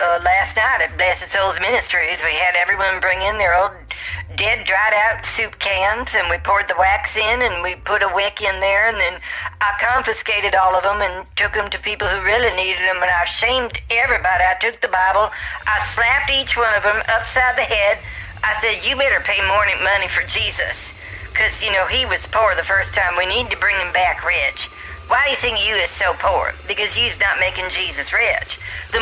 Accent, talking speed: American, 215 wpm